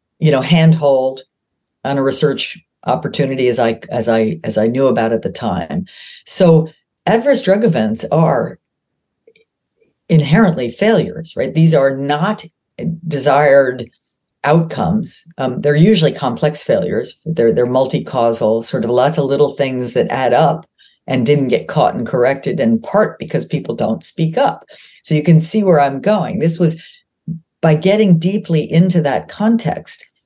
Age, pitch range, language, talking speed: 50-69, 130-170 Hz, English, 150 wpm